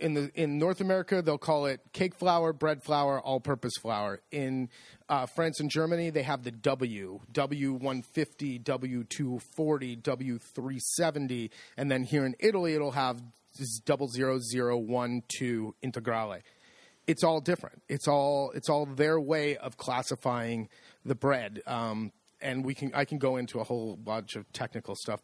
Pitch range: 125-150 Hz